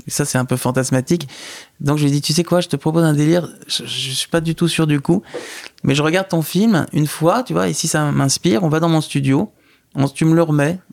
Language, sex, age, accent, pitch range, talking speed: French, male, 20-39, French, 140-170 Hz, 280 wpm